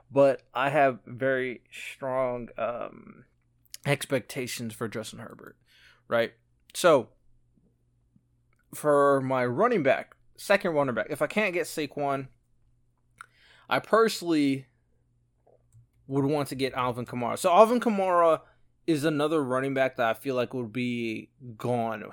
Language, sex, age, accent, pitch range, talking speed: English, male, 20-39, American, 120-145 Hz, 125 wpm